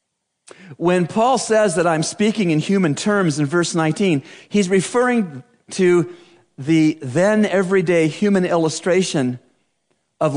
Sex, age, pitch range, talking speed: male, 50-69, 125-190 Hz, 120 wpm